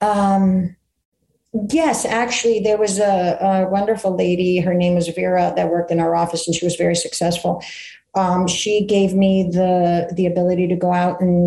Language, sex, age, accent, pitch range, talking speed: English, female, 50-69, American, 175-210 Hz, 180 wpm